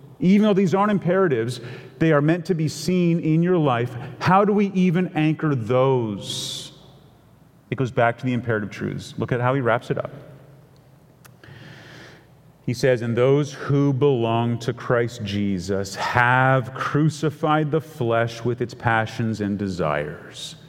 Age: 40-59